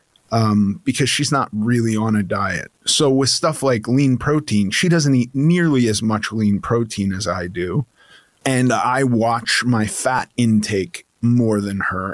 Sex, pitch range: male, 105-130 Hz